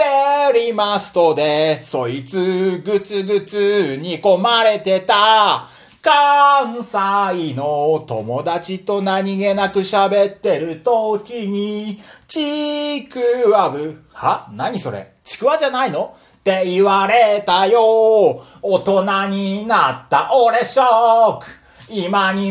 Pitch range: 195-290 Hz